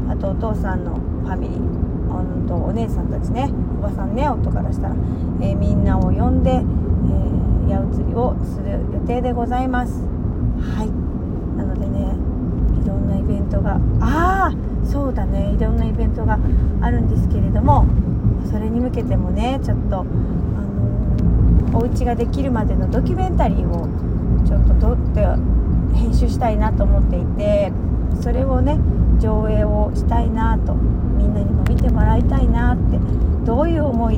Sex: female